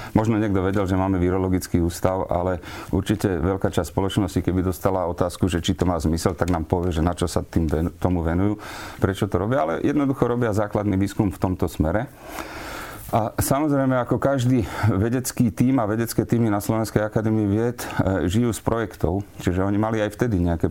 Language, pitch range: Slovak, 95-115 Hz